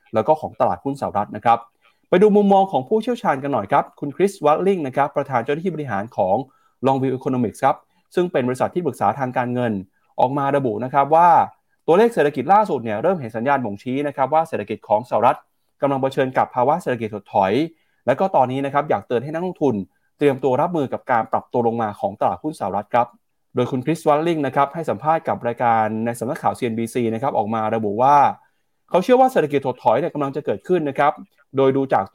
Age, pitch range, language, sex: 20-39, 125-160 Hz, Thai, male